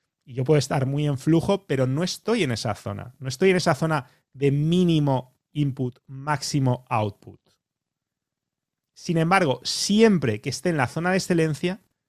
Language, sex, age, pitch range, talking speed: English, male, 30-49, 130-160 Hz, 165 wpm